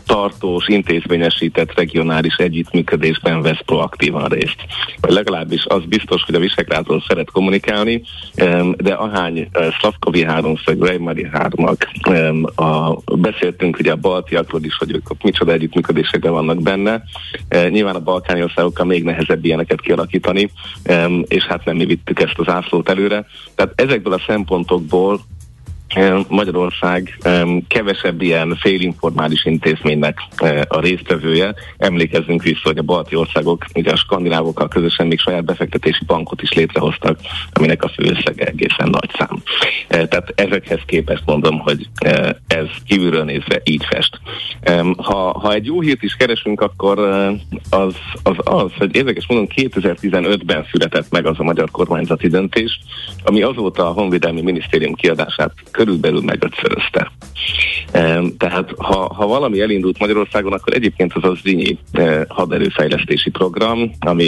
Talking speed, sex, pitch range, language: 125 wpm, male, 80-95 Hz, Hungarian